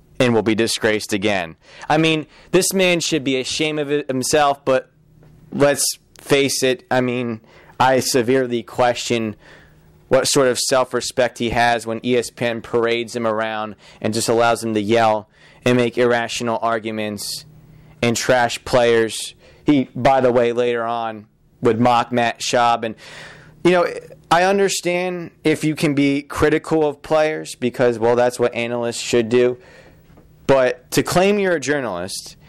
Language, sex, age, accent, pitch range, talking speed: English, male, 20-39, American, 120-160 Hz, 150 wpm